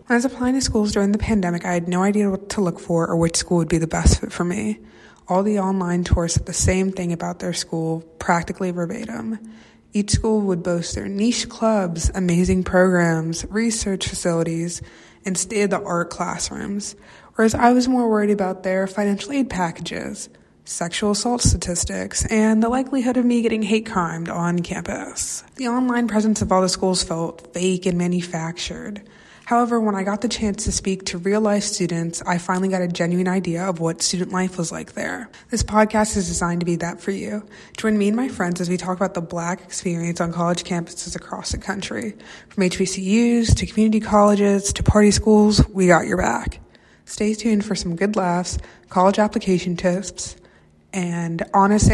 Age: 20-39